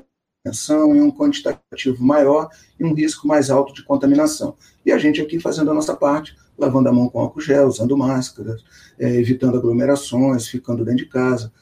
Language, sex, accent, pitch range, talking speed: Portuguese, male, Brazilian, 125-160 Hz, 175 wpm